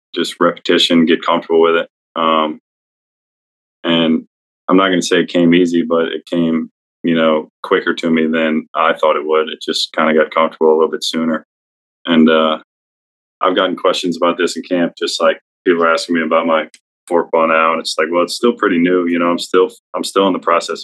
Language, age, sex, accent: English, 20-39, male, American